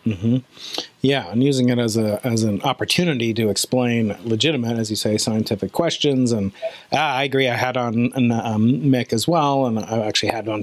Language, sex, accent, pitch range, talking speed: English, male, American, 115-140 Hz, 190 wpm